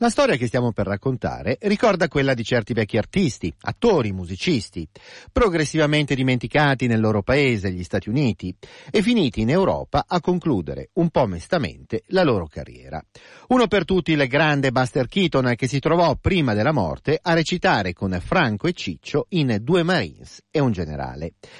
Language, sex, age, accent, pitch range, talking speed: Italian, male, 40-59, native, 100-160 Hz, 165 wpm